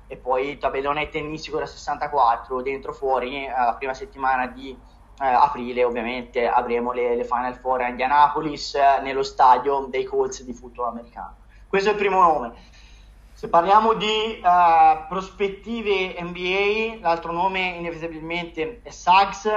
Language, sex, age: Italian, male, 20-39